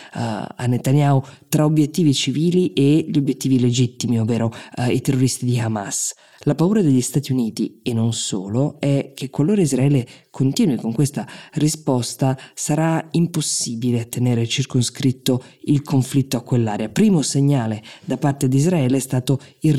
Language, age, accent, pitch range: Italian, 20-39, native, 125-150 Hz